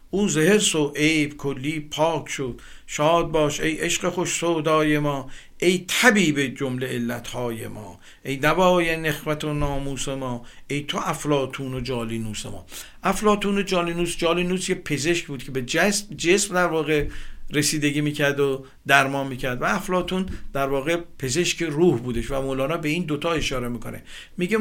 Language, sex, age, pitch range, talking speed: Persian, male, 50-69, 135-170 Hz, 155 wpm